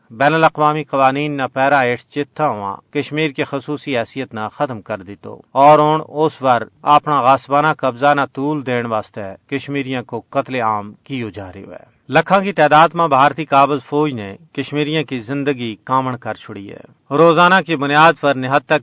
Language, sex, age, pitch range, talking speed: Urdu, male, 40-59, 120-150 Hz, 170 wpm